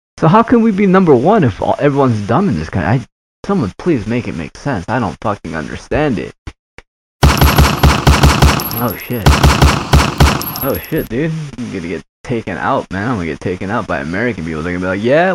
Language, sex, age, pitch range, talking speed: English, male, 20-39, 90-125 Hz, 195 wpm